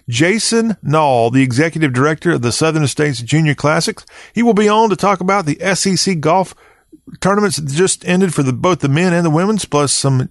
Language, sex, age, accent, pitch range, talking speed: English, male, 40-59, American, 135-170 Hz, 200 wpm